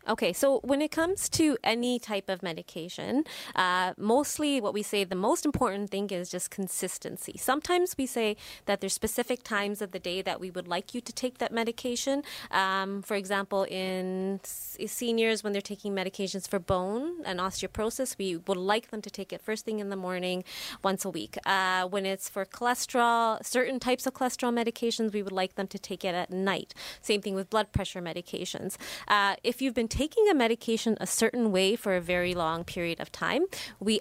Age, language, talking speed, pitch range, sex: 20-39, English, 200 wpm, 185-235 Hz, female